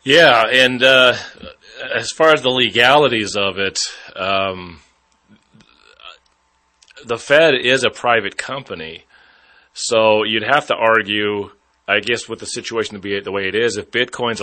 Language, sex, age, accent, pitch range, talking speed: English, male, 30-49, American, 105-130 Hz, 145 wpm